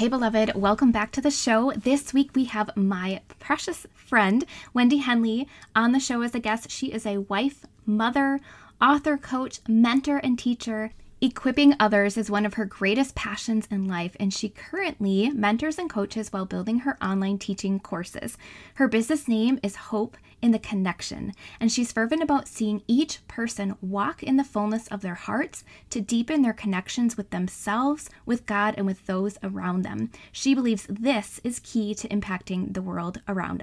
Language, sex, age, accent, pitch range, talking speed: English, female, 10-29, American, 205-255 Hz, 175 wpm